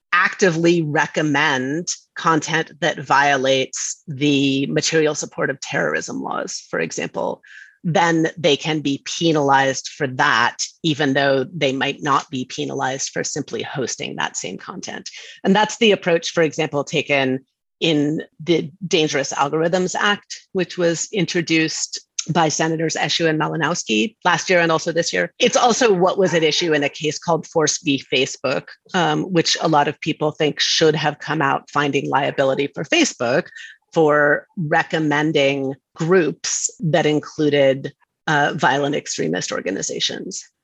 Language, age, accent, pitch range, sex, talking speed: English, 30-49, American, 145-175 Hz, female, 140 wpm